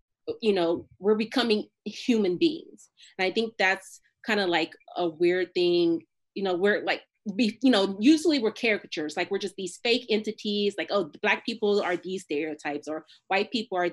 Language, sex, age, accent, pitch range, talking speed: English, female, 30-49, American, 175-220 Hz, 190 wpm